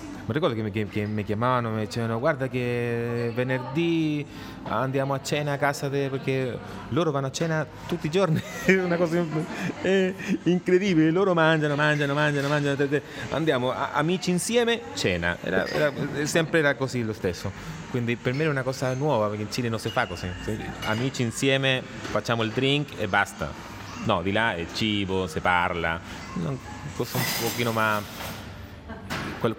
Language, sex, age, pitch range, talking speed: Italian, male, 30-49, 100-140 Hz, 165 wpm